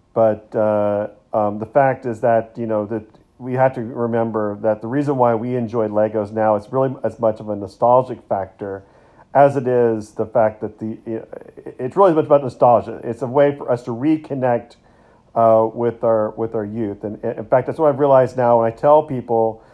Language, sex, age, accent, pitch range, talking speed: English, male, 40-59, American, 110-130 Hz, 205 wpm